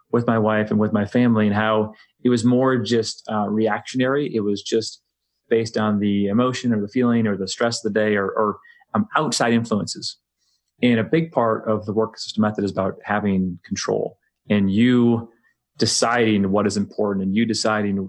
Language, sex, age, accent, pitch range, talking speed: English, male, 30-49, American, 105-120 Hz, 190 wpm